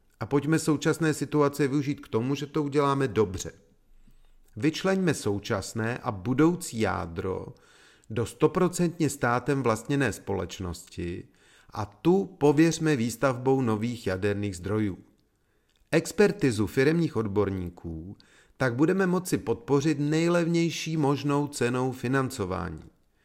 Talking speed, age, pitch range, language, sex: 100 wpm, 40-59, 105-145 Hz, Czech, male